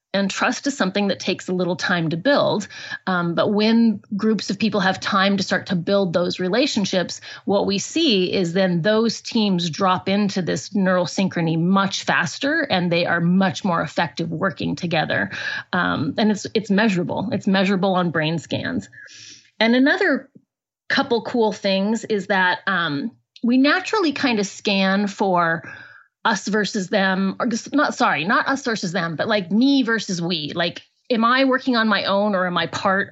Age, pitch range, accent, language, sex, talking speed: 30-49, 185-225 Hz, American, English, female, 175 wpm